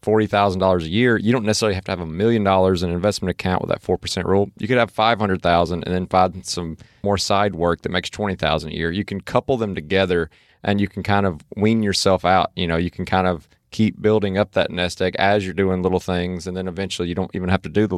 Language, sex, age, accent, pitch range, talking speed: English, male, 30-49, American, 90-110 Hz, 255 wpm